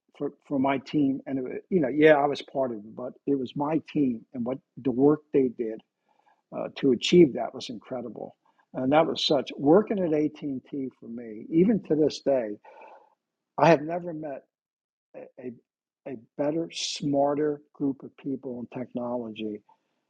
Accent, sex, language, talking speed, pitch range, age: American, male, English, 175 wpm, 125-160 Hz, 60-79